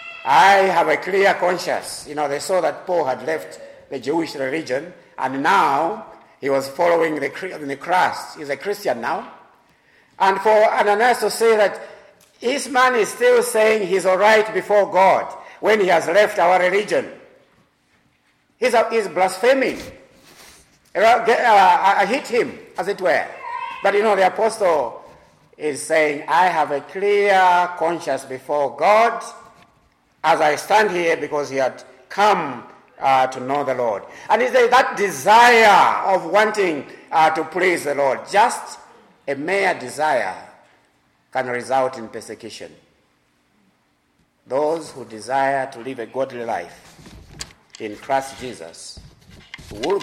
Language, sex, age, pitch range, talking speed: English, male, 50-69, 130-210 Hz, 140 wpm